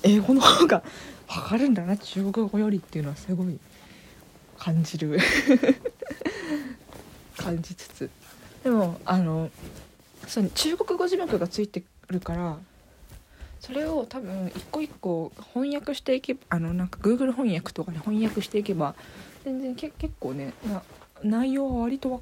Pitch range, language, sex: 180-260 Hz, Japanese, female